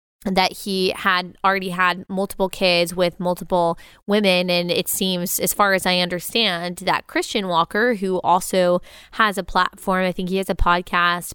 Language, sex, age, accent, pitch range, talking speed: English, female, 20-39, American, 175-205 Hz, 170 wpm